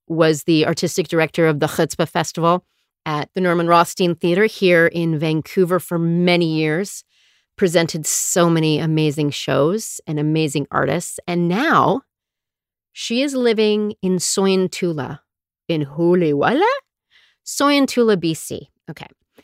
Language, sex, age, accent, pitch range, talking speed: English, female, 40-59, American, 155-210 Hz, 120 wpm